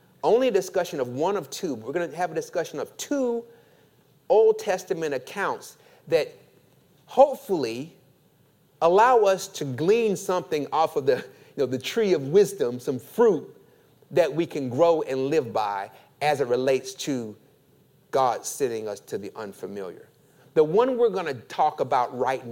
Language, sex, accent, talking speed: English, male, American, 155 wpm